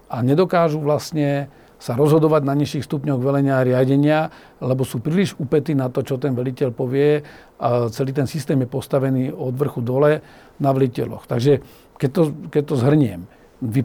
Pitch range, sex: 130-150 Hz, male